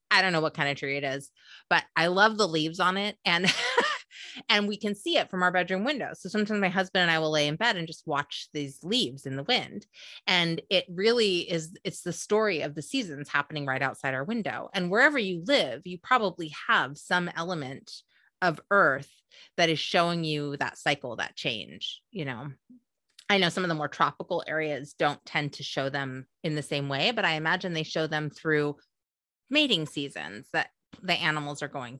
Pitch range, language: 145-190 Hz, English